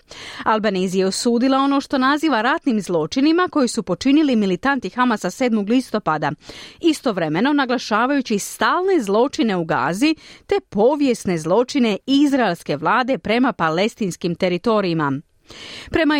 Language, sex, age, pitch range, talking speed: Croatian, female, 40-59, 195-275 Hz, 105 wpm